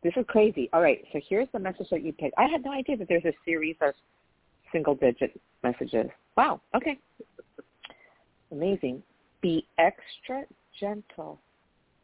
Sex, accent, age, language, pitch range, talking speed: female, American, 50-69, English, 140-195 Hz, 145 wpm